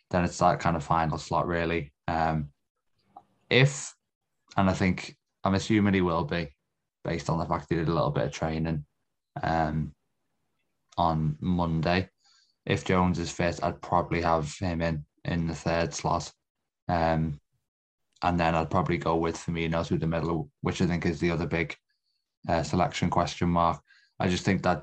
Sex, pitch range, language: male, 80-95 Hz, English